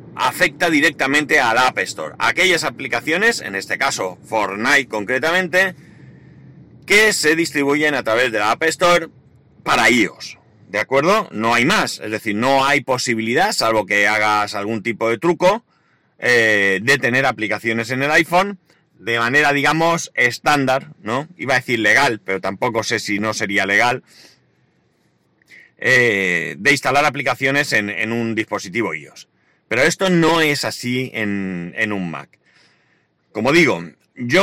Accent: Spanish